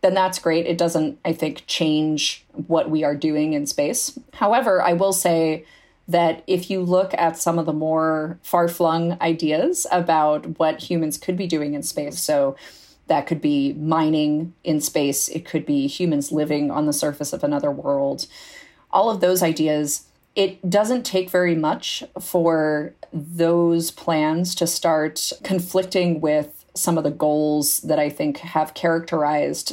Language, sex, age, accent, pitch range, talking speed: English, female, 30-49, American, 155-185 Hz, 160 wpm